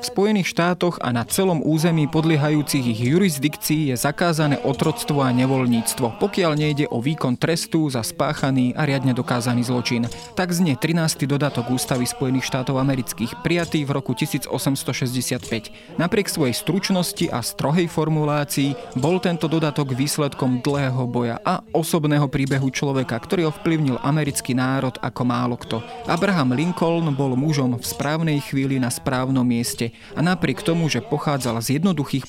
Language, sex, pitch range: Slovak, male, 130-160 Hz